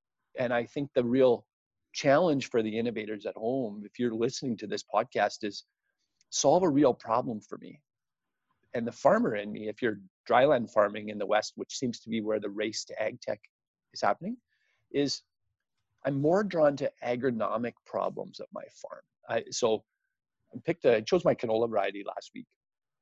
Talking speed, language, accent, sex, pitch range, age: 180 wpm, English, American, male, 110-135 Hz, 40-59